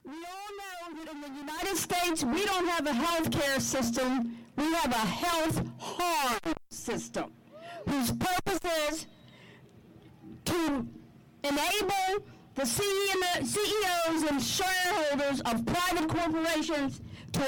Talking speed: 115 wpm